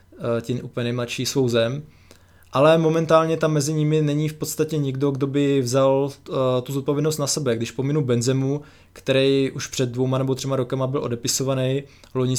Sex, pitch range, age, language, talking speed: male, 120-140 Hz, 20-39, Czech, 165 wpm